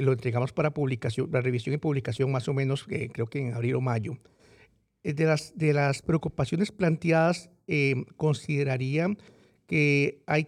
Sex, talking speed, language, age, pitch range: male, 160 wpm, Spanish, 50-69, 130-160 Hz